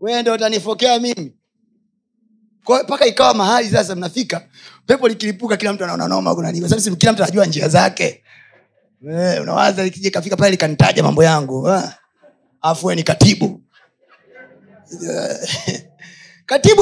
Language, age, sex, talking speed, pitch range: Swahili, 30-49, male, 115 wpm, 180-245 Hz